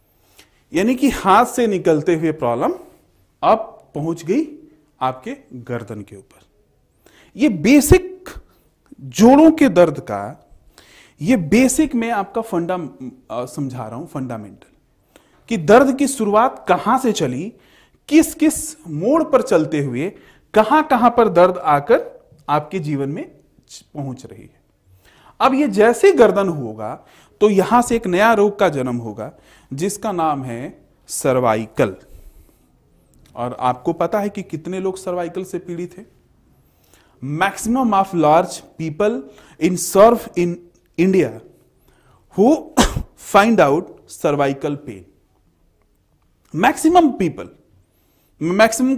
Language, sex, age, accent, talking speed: Hindi, male, 40-59, native, 120 wpm